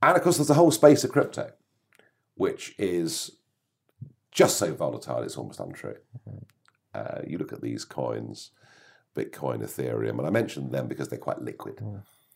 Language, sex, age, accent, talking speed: English, male, 50-69, British, 160 wpm